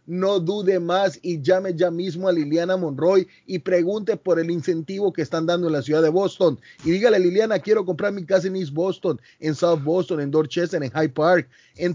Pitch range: 145-190 Hz